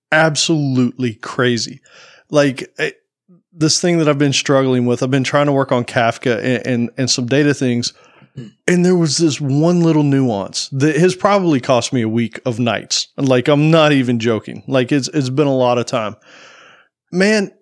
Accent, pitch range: American, 125-175 Hz